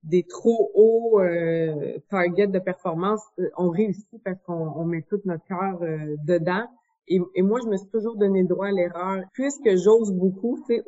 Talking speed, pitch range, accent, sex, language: 200 wpm, 180-220 Hz, Canadian, female, French